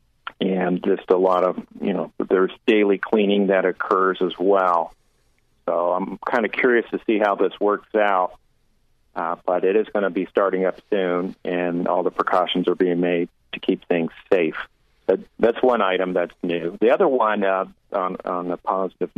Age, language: 50-69, English